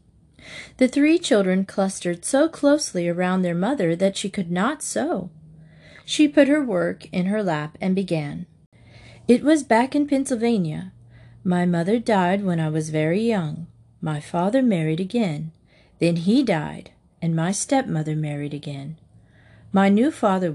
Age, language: 40-59, English